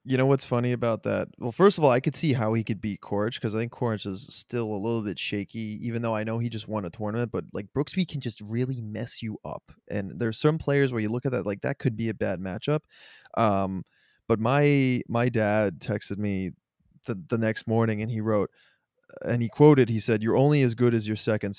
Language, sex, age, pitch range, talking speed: English, male, 20-39, 105-125 Hz, 245 wpm